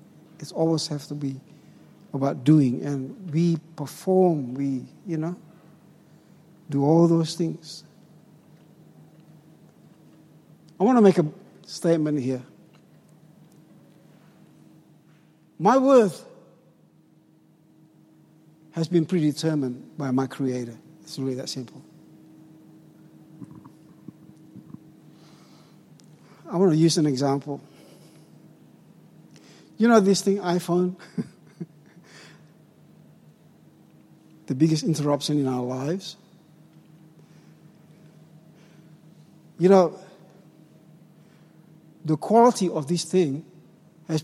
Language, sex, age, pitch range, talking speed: English, male, 60-79, 155-175 Hz, 85 wpm